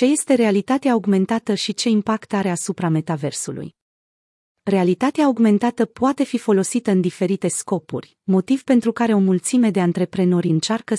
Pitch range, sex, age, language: 175-220 Hz, female, 30-49, Romanian